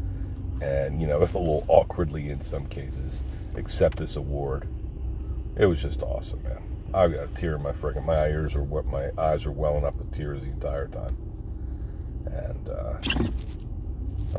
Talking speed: 160 wpm